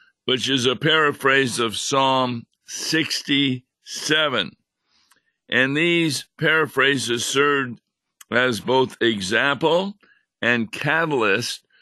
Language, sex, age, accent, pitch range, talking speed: English, male, 50-69, American, 115-140 Hz, 80 wpm